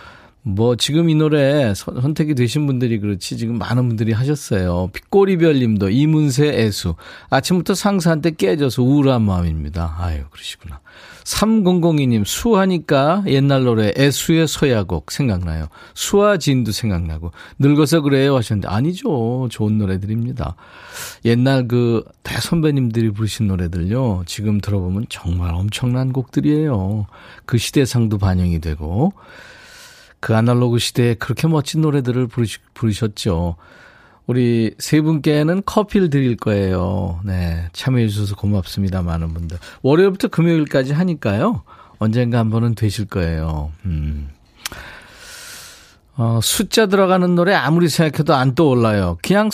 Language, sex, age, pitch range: Korean, male, 40-59, 100-155 Hz